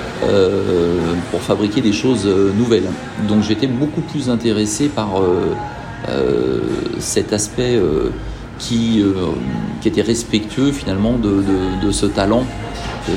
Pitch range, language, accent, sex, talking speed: 105-135 Hz, French, French, male, 130 wpm